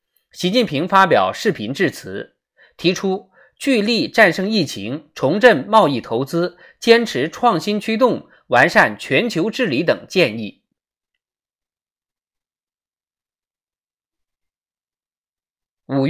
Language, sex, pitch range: Chinese, male, 165-230 Hz